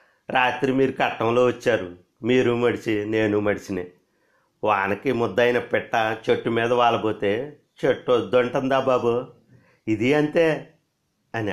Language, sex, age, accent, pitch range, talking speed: Telugu, male, 50-69, native, 105-140 Hz, 105 wpm